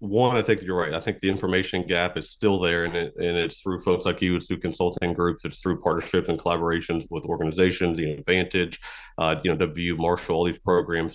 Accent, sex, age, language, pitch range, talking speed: American, male, 30-49, English, 90-110 Hz, 230 wpm